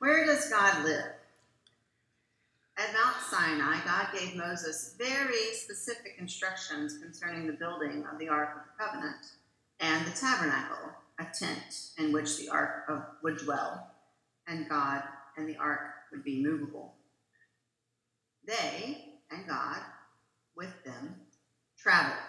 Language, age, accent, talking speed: English, 40-59, American, 125 wpm